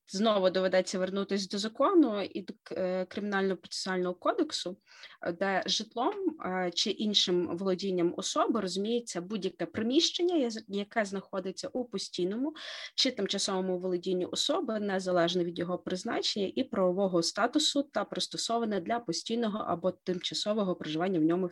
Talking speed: 115 wpm